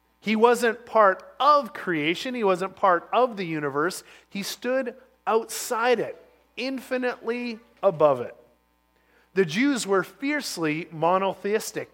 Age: 40-59